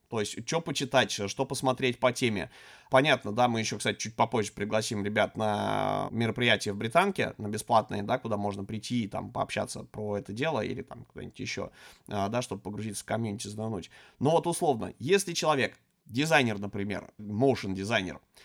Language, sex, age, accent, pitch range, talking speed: Russian, male, 20-39, native, 105-130 Hz, 165 wpm